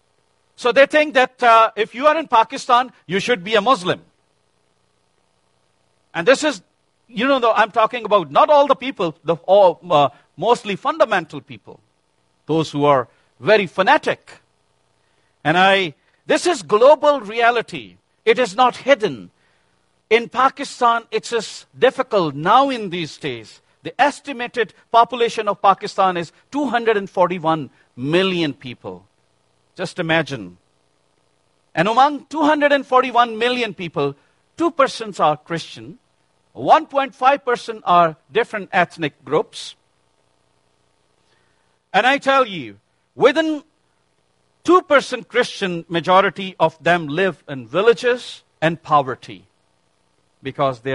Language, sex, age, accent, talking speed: English, male, 50-69, Indian, 120 wpm